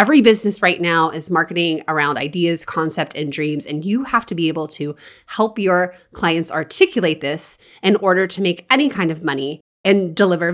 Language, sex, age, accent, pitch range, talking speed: English, female, 30-49, American, 170-235 Hz, 190 wpm